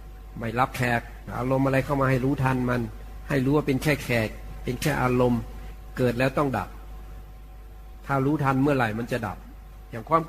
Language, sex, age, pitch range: Thai, male, 60-79, 115-140 Hz